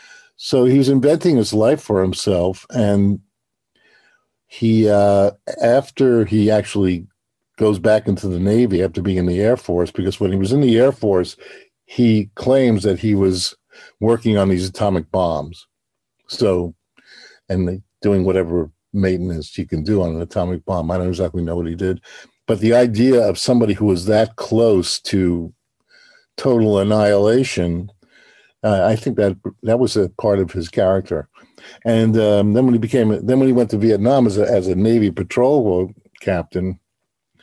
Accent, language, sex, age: American, English, male, 50-69